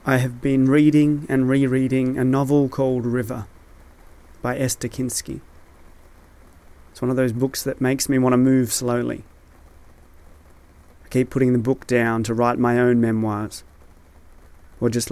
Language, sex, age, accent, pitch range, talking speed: English, male, 30-49, Australian, 85-130 Hz, 150 wpm